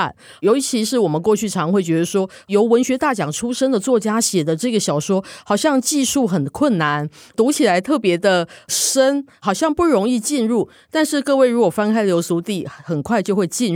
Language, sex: Chinese, female